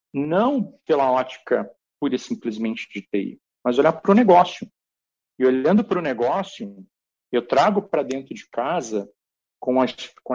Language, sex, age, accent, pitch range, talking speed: Portuguese, male, 50-69, Brazilian, 105-155 Hz, 155 wpm